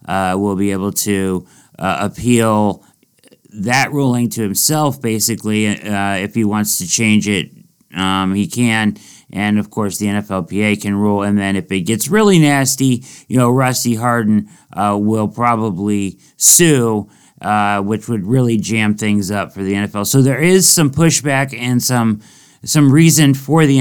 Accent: American